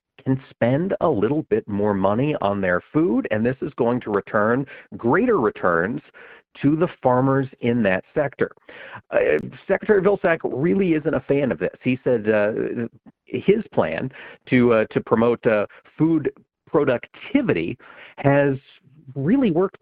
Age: 40-59